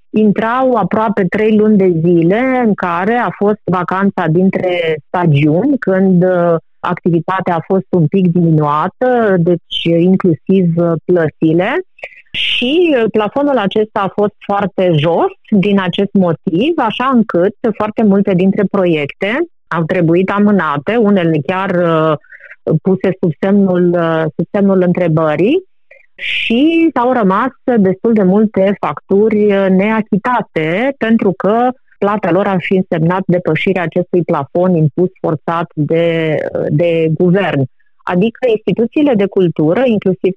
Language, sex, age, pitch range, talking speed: Romanian, female, 30-49, 175-215 Hz, 115 wpm